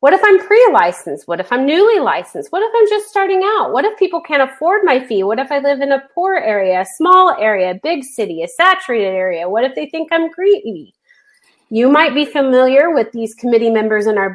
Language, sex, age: English, female, 30-49